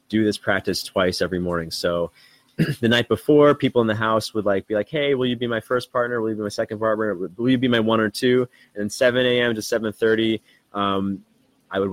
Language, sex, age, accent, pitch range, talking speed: English, male, 20-39, American, 100-125 Hz, 235 wpm